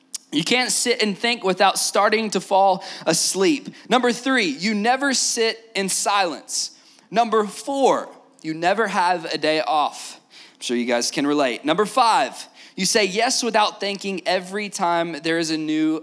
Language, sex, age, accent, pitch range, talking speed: English, male, 20-39, American, 165-250 Hz, 165 wpm